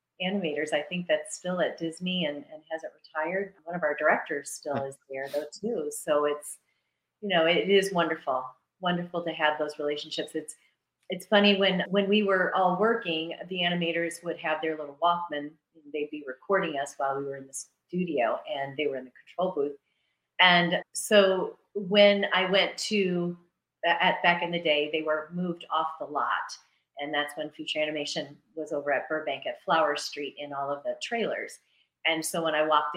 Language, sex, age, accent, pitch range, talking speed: English, female, 40-59, American, 150-200 Hz, 190 wpm